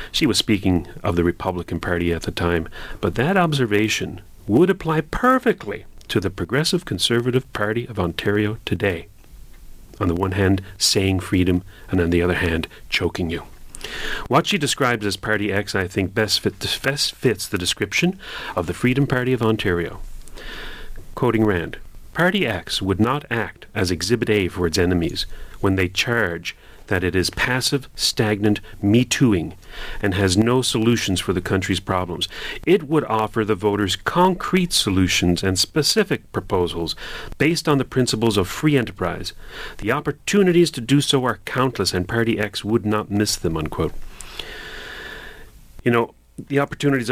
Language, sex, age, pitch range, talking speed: English, male, 40-59, 95-125 Hz, 155 wpm